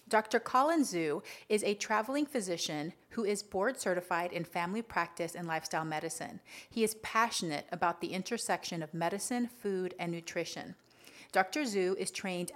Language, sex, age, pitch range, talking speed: English, female, 30-49, 170-215 Hz, 150 wpm